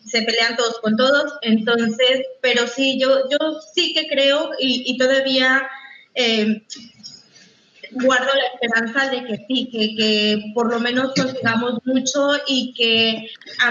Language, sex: Spanish, female